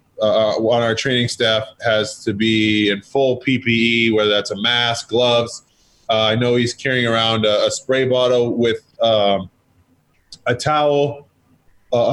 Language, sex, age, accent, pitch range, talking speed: English, male, 20-39, American, 110-125 Hz, 155 wpm